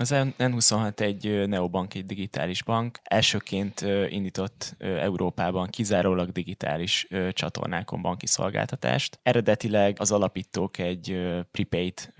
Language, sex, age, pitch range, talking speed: Hungarian, male, 10-29, 95-115 Hz, 100 wpm